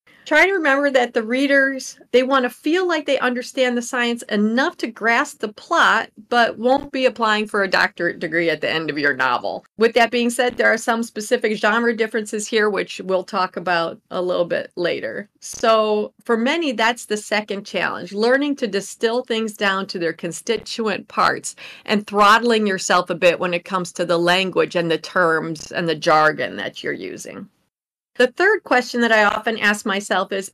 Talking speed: 195 wpm